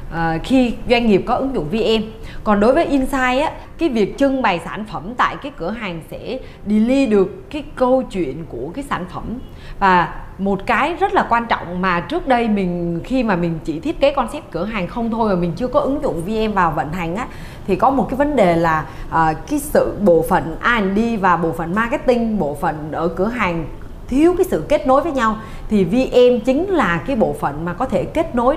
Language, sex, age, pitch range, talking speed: Vietnamese, female, 20-39, 175-255 Hz, 225 wpm